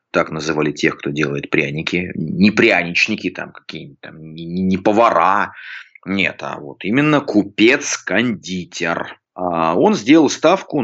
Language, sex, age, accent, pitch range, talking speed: Russian, male, 30-49, native, 85-105 Hz, 115 wpm